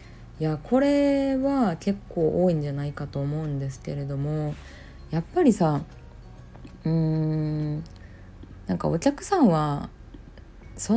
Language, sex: Japanese, female